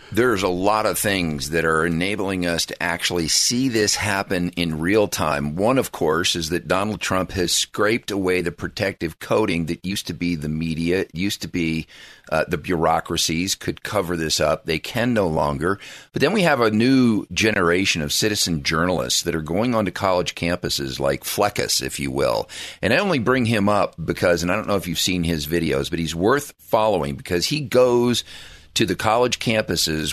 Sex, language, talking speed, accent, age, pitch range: male, English, 195 wpm, American, 50-69, 80-105 Hz